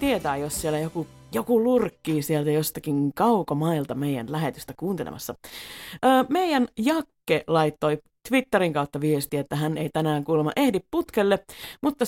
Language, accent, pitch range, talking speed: Finnish, native, 150-235 Hz, 135 wpm